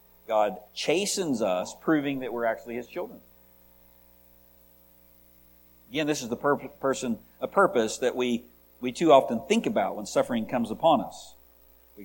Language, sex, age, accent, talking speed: English, male, 60-79, American, 155 wpm